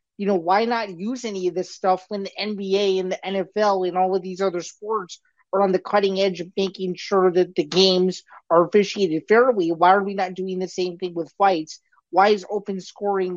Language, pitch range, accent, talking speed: English, 185-230 Hz, American, 220 wpm